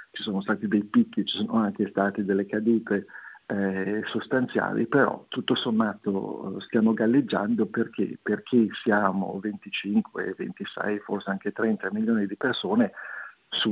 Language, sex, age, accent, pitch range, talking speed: Italian, male, 50-69, native, 100-115 Hz, 125 wpm